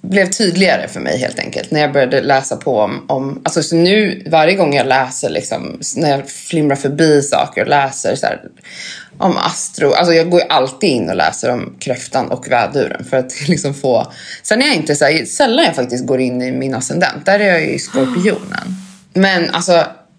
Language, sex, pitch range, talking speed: Swedish, female, 140-185 Hz, 210 wpm